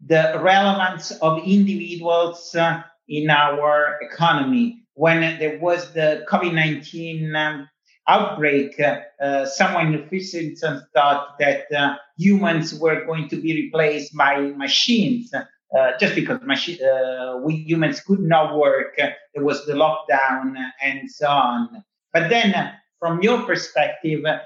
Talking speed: 135 wpm